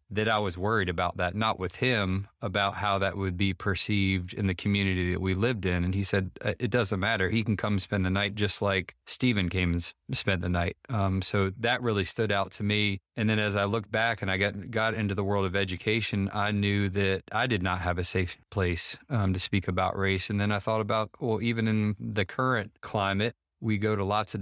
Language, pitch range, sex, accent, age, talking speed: English, 95-105 Hz, male, American, 30-49, 235 wpm